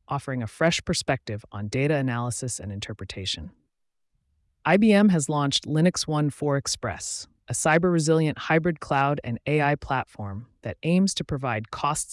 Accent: American